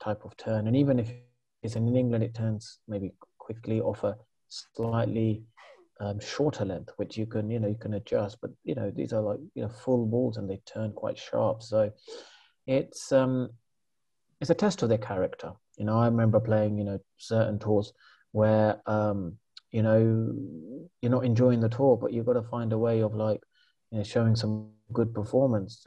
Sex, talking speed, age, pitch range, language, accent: male, 195 wpm, 30-49, 105-115 Hz, English, British